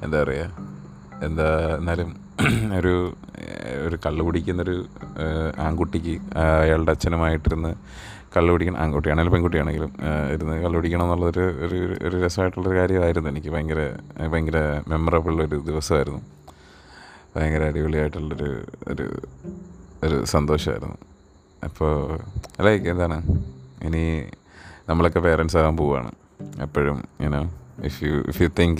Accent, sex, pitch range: native, male, 75-85 Hz